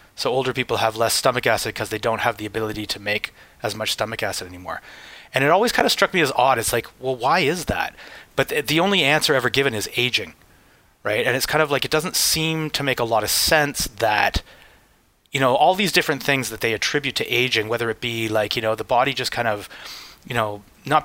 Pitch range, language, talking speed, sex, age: 115-140 Hz, English, 240 wpm, male, 30-49